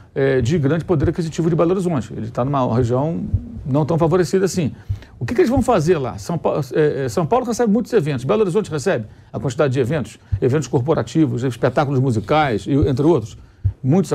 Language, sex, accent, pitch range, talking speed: Portuguese, male, Brazilian, 120-190 Hz, 180 wpm